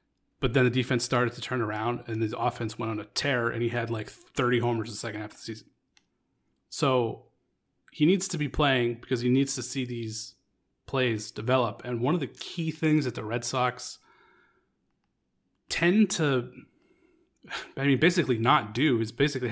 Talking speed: 190 wpm